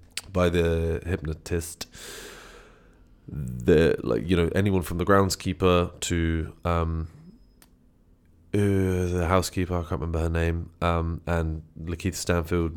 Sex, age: male, 20-39